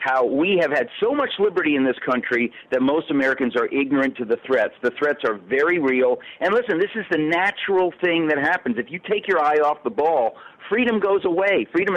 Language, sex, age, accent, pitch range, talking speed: English, male, 50-69, American, 135-205 Hz, 220 wpm